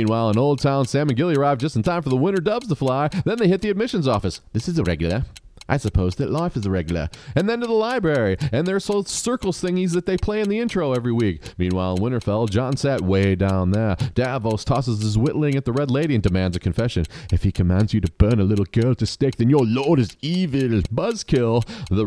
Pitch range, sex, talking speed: 90-135 Hz, male, 250 wpm